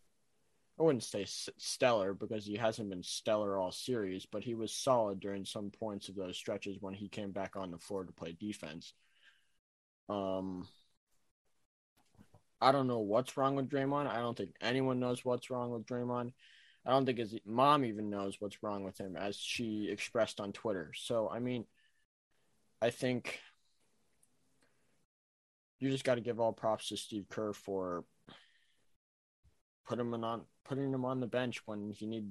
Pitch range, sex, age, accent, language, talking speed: 100-125 Hz, male, 20-39, American, English, 170 wpm